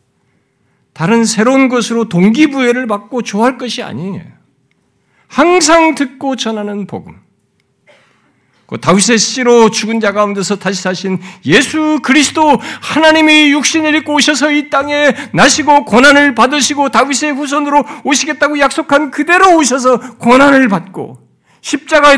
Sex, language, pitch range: male, Korean, 225-315 Hz